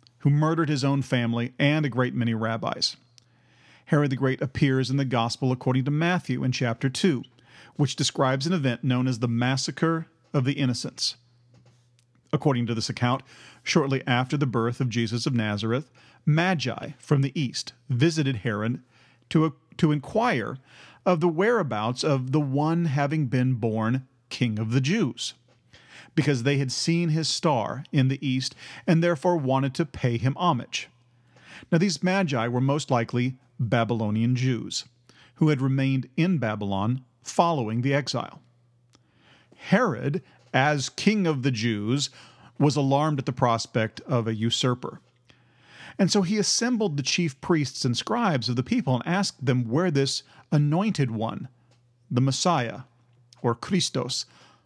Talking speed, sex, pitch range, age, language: 150 wpm, male, 120-150 Hz, 40-59, English